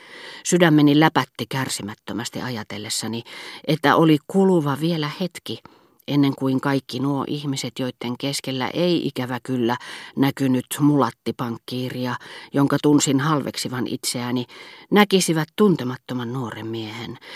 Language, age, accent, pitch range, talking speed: Finnish, 40-59, native, 120-155 Hz, 100 wpm